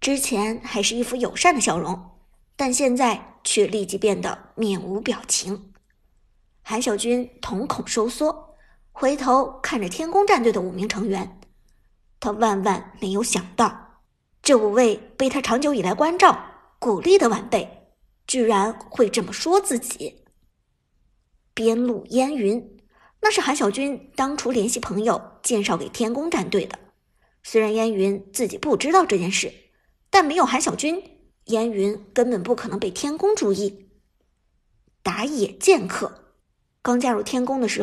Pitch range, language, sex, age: 210-275 Hz, Chinese, male, 50-69